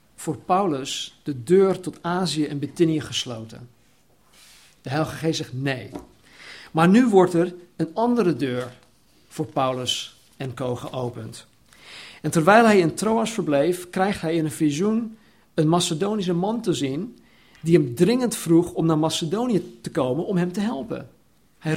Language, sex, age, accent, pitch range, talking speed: Dutch, male, 50-69, Dutch, 145-185 Hz, 150 wpm